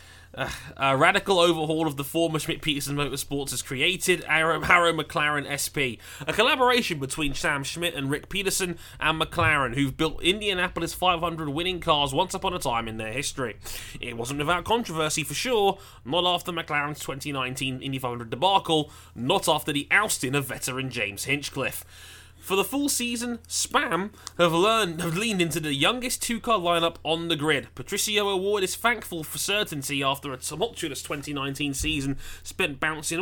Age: 20-39